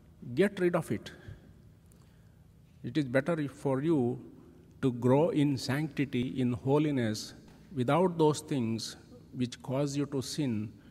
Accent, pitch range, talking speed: Indian, 120-145 Hz, 125 wpm